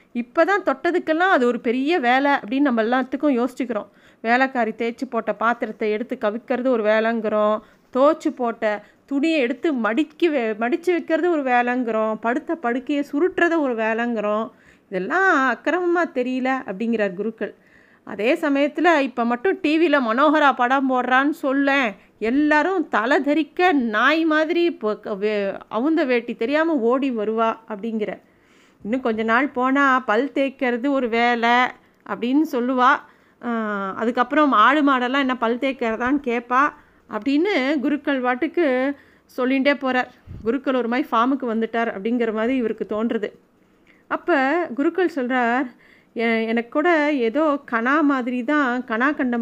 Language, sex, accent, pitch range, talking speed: Tamil, female, native, 230-290 Hz, 120 wpm